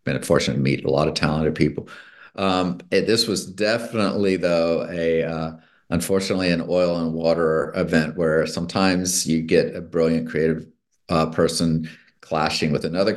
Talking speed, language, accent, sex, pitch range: 160 wpm, English, American, male, 80-95 Hz